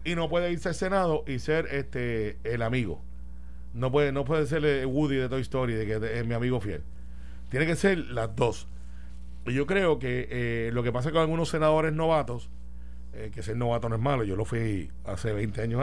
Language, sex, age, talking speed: Spanish, male, 40-59, 225 wpm